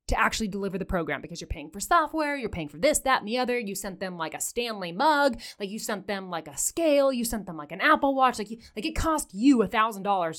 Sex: female